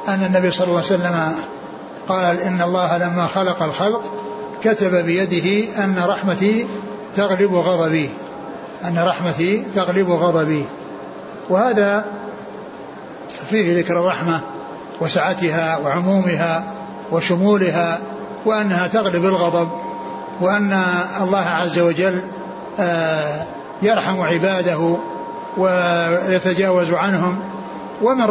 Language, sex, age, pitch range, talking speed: Arabic, male, 60-79, 175-205 Hz, 85 wpm